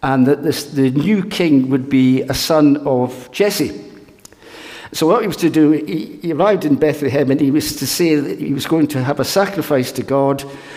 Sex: male